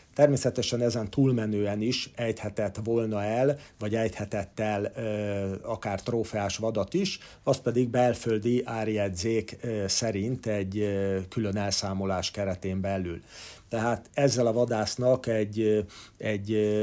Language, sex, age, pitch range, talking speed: Hungarian, male, 50-69, 105-120 Hz, 105 wpm